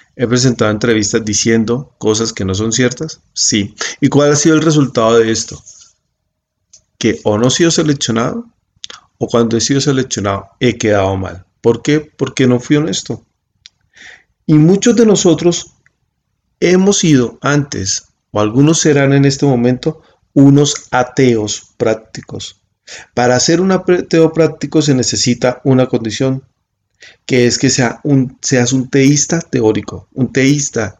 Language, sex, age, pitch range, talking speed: Spanish, male, 40-59, 110-140 Hz, 145 wpm